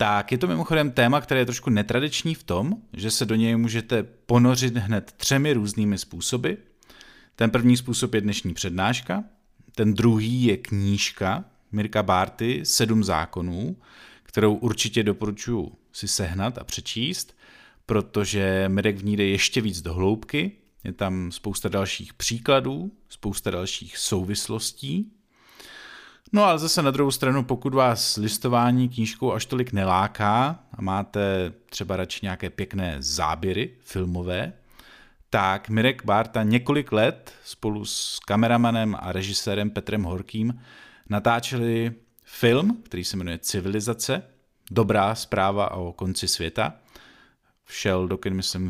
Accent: native